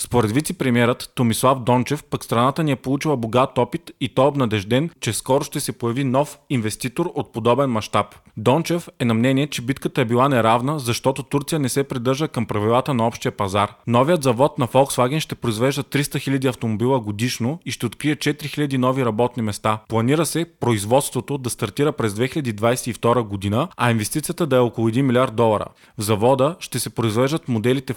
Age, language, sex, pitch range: 30-49, Bulgarian, male, 120-140 Hz